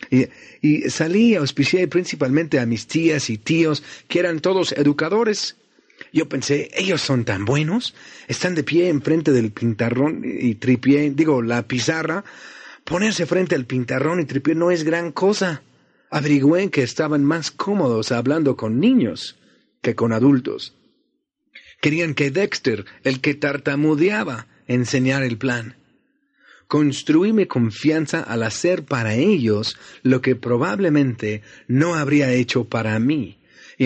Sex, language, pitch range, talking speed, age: male, Spanish, 125-160 Hz, 135 wpm, 40-59